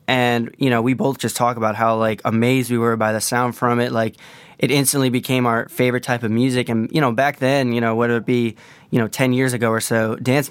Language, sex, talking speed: English, male, 255 wpm